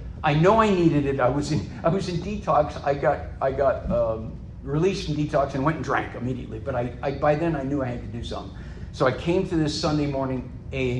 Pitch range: 120-165 Hz